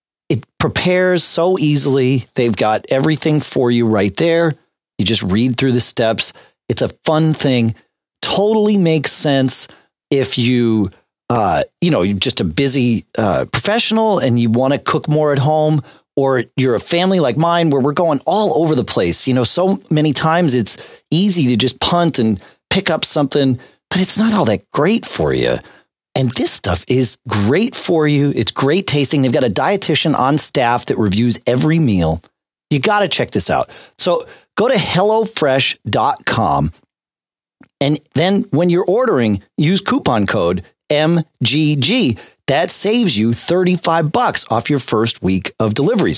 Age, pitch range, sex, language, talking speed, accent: 40-59, 120-165 Hz, male, English, 165 wpm, American